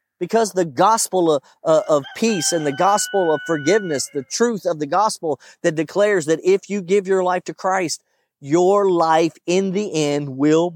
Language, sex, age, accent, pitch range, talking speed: English, male, 40-59, American, 145-190 Hz, 185 wpm